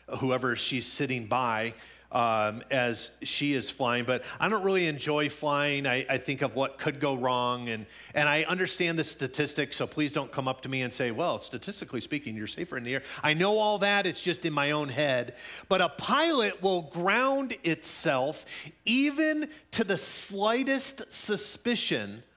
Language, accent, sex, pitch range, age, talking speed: English, American, male, 120-190 Hz, 40-59, 180 wpm